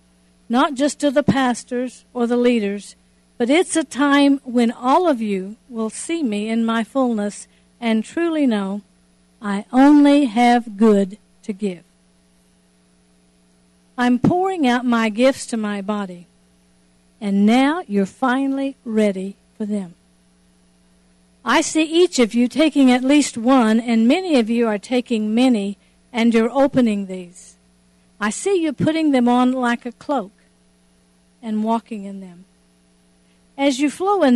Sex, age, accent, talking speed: female, 60-79, American, 145 wpm